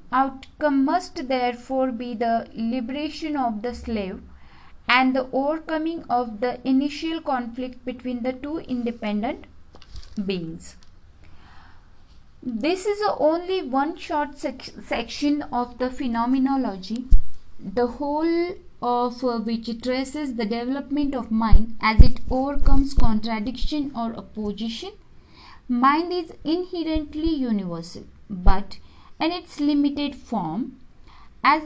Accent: Indian